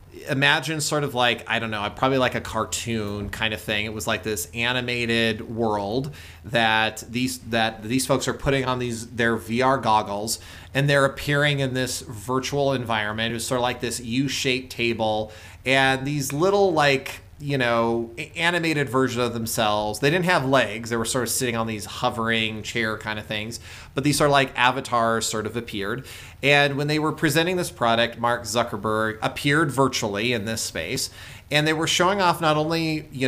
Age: 30-49